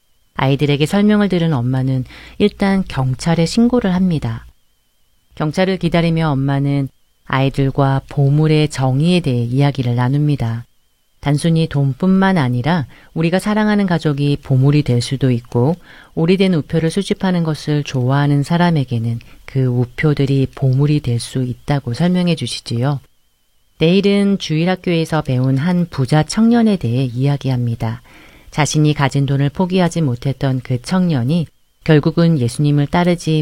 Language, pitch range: Korean, 130-165 Hz